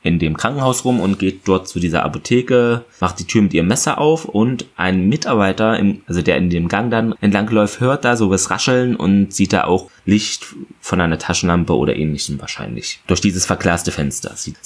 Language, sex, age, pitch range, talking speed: German, male, 20-39, 90-115 Hz, 205 wpm